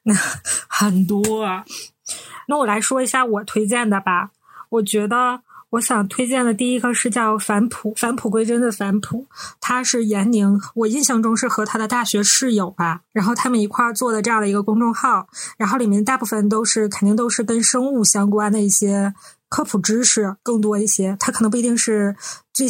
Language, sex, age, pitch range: Chinese, female, 20-39, 205-240 Hz